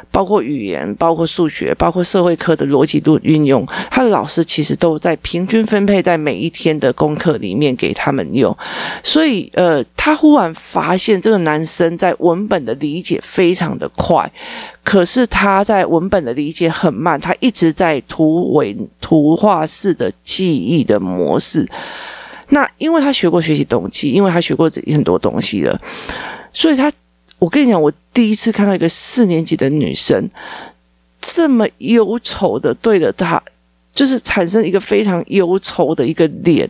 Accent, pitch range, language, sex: native, 160-205 Hz, Chinese, male